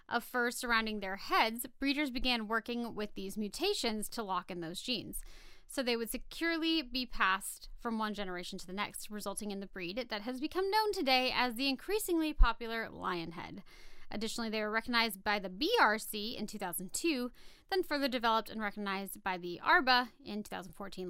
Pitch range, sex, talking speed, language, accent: 195-280 Hz, female, 175 wpm, English, American